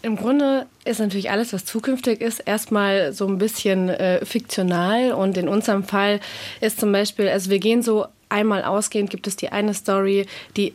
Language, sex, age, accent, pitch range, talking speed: German, female, 20-39, German, 185-215 Hz, 185 wpm